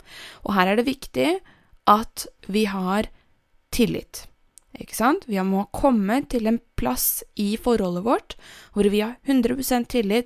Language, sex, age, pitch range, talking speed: English, female, 20-39, 185-235 Hz, 210 wpm